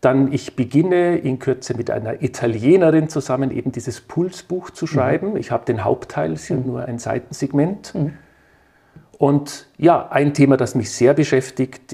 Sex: male